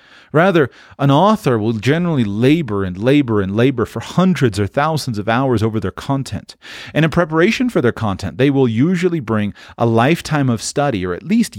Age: 40-59